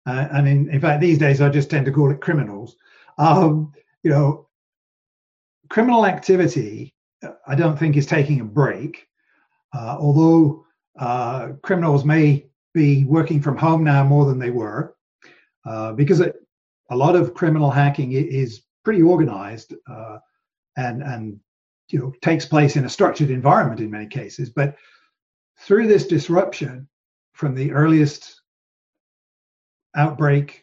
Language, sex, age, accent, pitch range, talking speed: English, male, 50-69, British, 135-165 Hz, 145 wpm